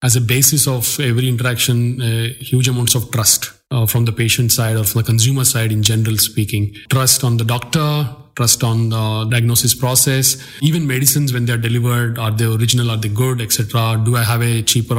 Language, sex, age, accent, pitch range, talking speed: English, male, 30-49, Indian, 120-140 Hz, 200 wpm